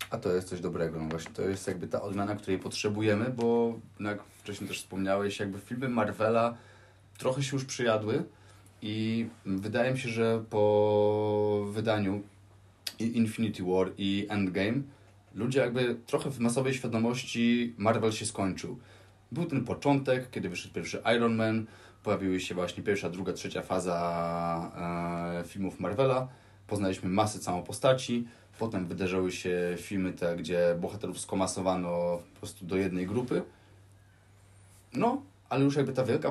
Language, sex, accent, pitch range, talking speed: Polish, male, native, 95-120 Hz, 145 wpm